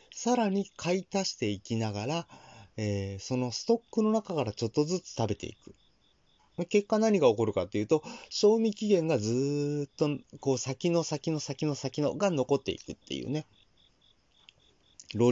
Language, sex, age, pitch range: Japanese, male, 30-49, 100-170 Hz